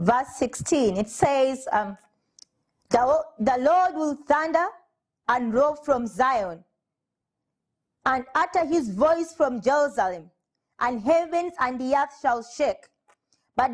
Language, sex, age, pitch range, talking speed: English, female, 30-49, 210-310 Hz, 120 wpm